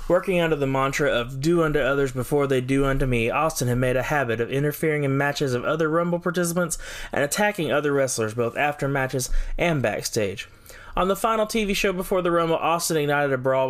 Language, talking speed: English, 205 wpm